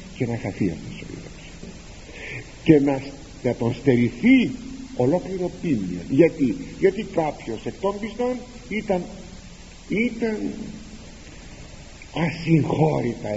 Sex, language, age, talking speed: male, Greek, 60-79, 80 wpm